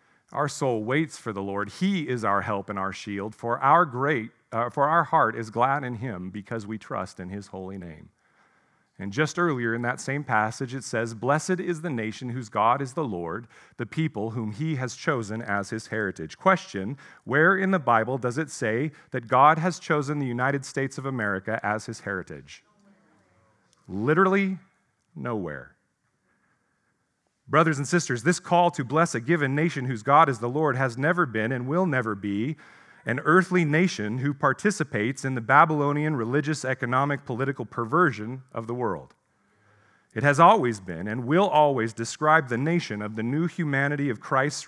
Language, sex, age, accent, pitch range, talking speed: English, male, 40-59, American, 110-155 Hz, 180 wpm